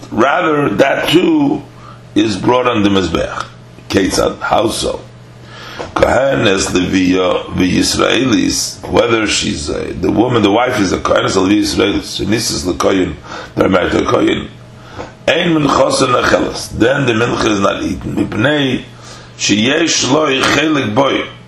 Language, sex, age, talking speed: English, male, 50-69, 130 wpm